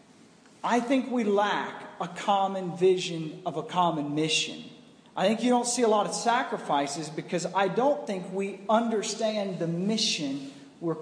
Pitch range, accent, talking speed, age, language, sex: 190-245 Hz, American, 160 wpm, 40-59, English, male